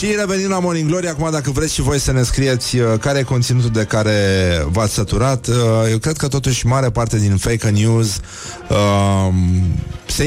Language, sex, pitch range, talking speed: Romanian, male, 100-125 Hz, 195 wpm